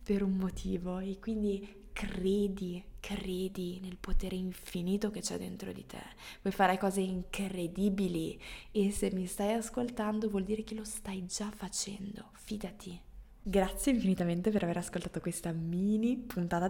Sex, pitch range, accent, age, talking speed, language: female, 175-205 Hz, native, 20-39, 145 wpm, Italian